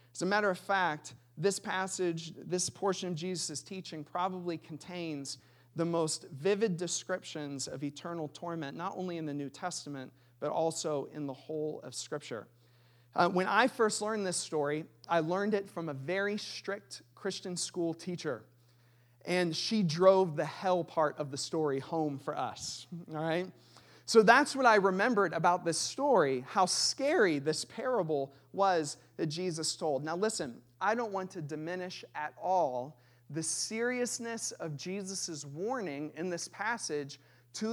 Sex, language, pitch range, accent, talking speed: male, English, 150-195 Hz, American, 155 wpm